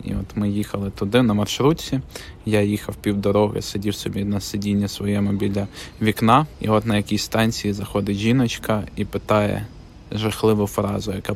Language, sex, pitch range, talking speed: Ukrainian, male, 100-110 Hz, 155 wpm